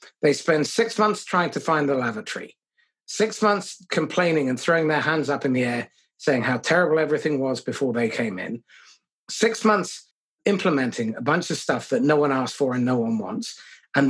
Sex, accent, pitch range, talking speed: male, British, 140-195 Hz, 195 wpm